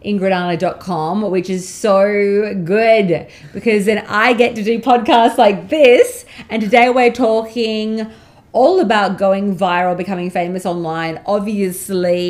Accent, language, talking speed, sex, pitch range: Australian, English, 125 wpm, female, 165-205 Hz